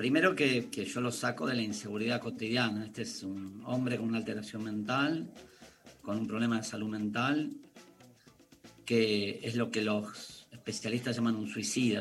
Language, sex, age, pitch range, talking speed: Spanish, male, 40-59, 110-130 Hz, 165 wpm